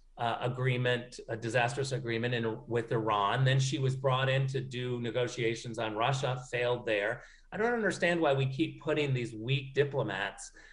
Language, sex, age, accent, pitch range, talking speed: English, male, 40-59, American, 120-150 Hz, 160 wpm